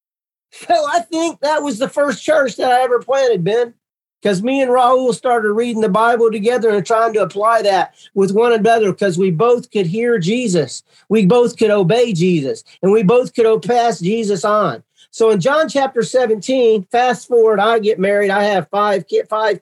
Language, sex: English, male